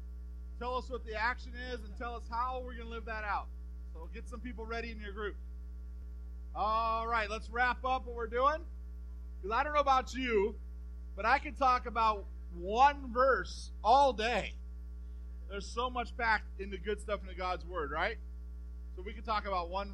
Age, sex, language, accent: 40-59, male, English, American